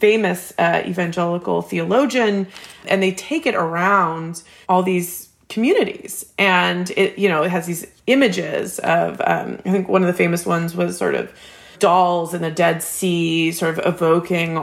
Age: 30-49